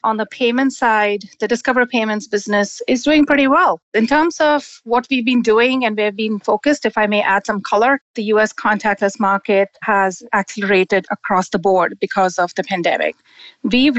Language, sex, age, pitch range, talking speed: English, female, 30-49, 195-235 Hz, 190 wpm